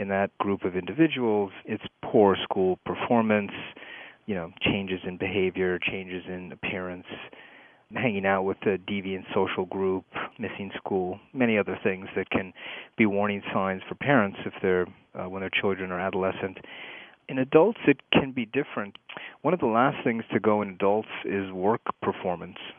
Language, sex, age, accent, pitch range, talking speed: English, male, 30-49, American, 95-105 Hz, 165 wpm